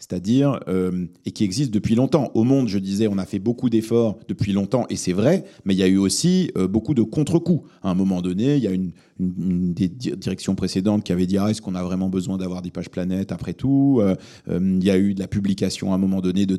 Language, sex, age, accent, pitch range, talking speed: French, male, 30-49, French, 95-125 Hz, 255 wpm